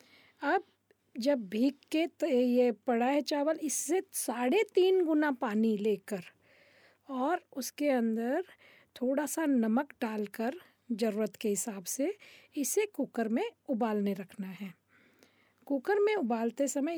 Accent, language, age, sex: native, Hindi, 40-59, female